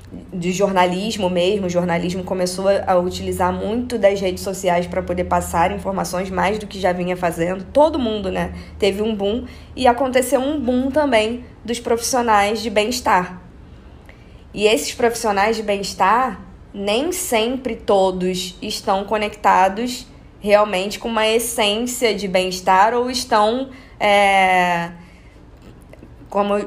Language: Portuguese